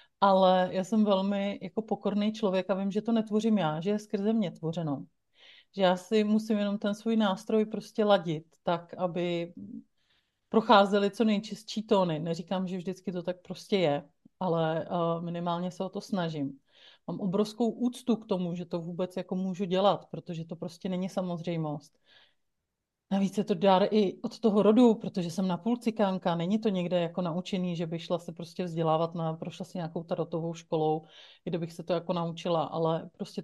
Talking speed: 175 wpm